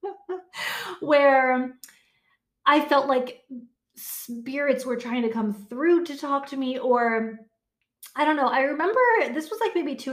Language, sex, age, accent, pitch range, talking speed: English, female, 30-49, American, 225-305 Hz, 150 wpm